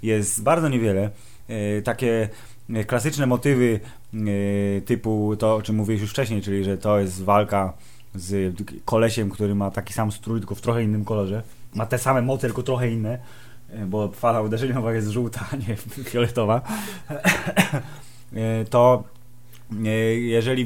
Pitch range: 110-130 Hz